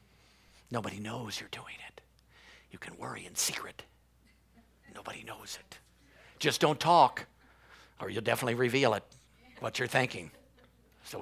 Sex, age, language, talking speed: male, 50-69, English, 135 wpm